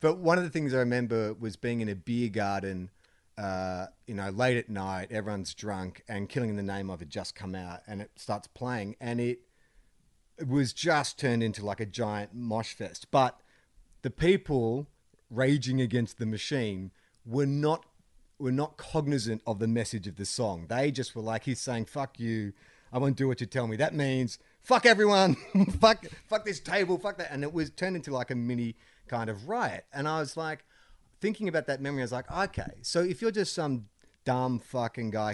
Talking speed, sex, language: 205 wpm, male, English